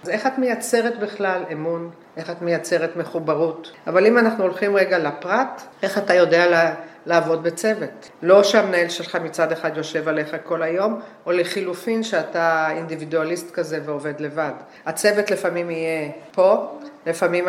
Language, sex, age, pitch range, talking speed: Hebrew, female, 50-69, 165-215 Hz, 145 wpm